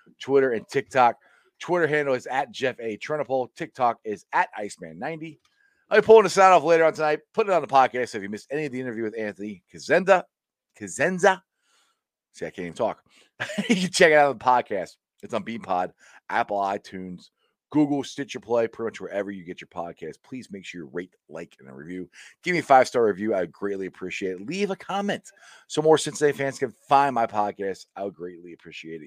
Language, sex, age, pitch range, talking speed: English, male, 30-49, 105-155 Hz, 205 wpm